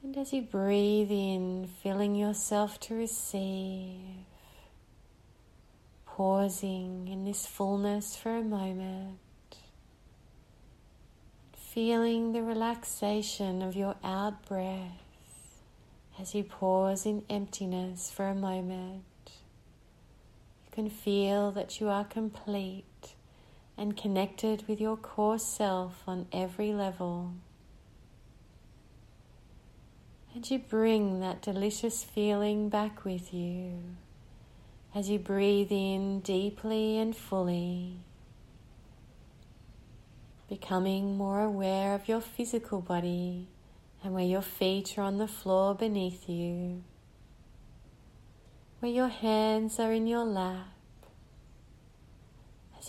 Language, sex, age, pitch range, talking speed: English, female, 30-49, 185-210 Hz, 100 wpm